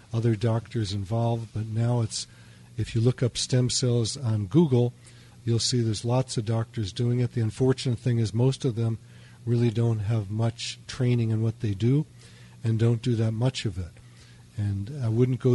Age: 50-69